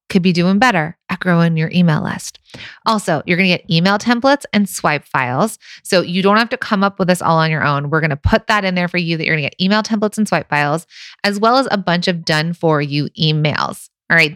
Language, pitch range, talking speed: English, 170-220 Hz, 265 wpm